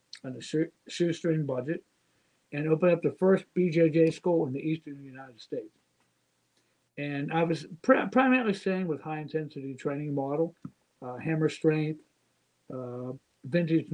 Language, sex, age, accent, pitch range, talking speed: English, male, 60-79, American, 145-175 Hz, 140 wpm